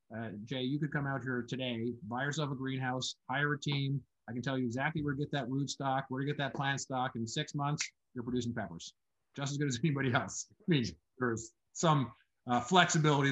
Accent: American